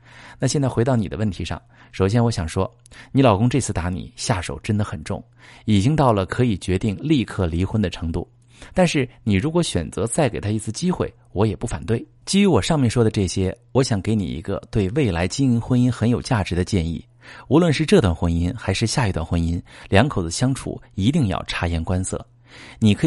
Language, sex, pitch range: Chinese, male, 100-125 Hz